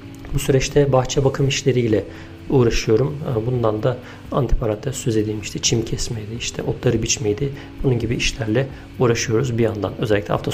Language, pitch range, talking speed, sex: Turkish, 110-135 Hz, 135 wpm, male